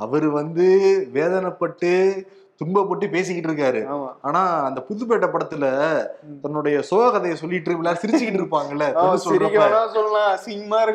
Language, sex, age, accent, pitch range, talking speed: Tamil, male, 20-39, native, 170-210 Hz, 105 wpm